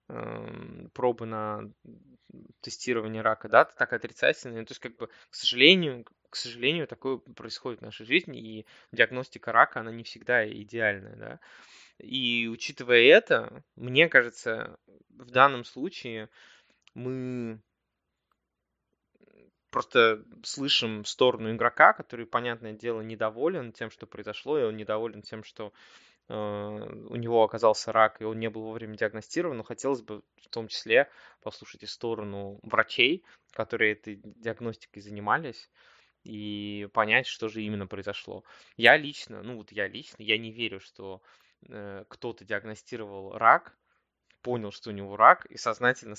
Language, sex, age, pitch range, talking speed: Russian, male, 20-39, 105-120 Hz, 135 wpm